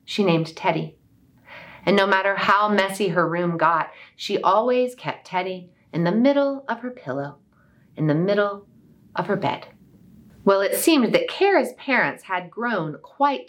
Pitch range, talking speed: 170-255 Hz, 160 wpm